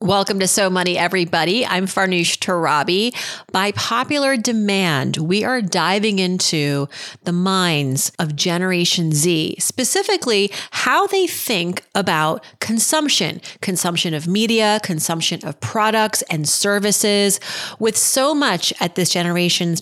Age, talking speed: 30-49, 125 wpm